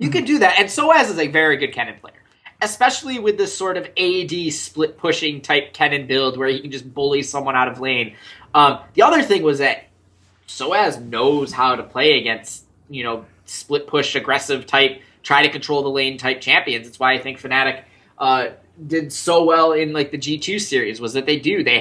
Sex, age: male, 20-39